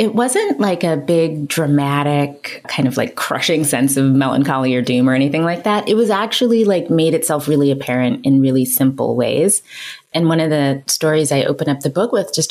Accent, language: American, English